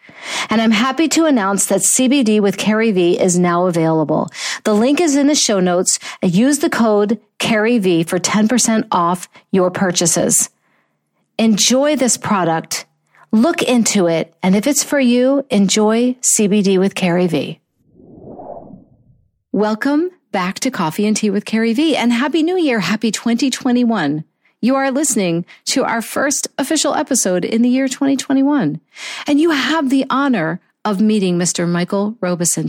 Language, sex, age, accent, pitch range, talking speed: English, female, 50-69, American, 180-260 Hz, 150 wpm